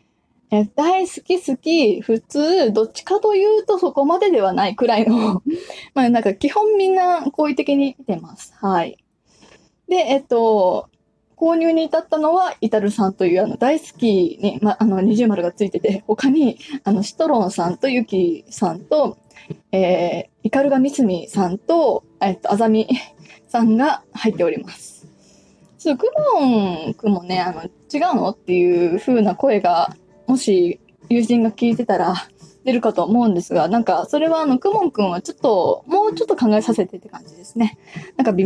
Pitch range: 205-285 Hz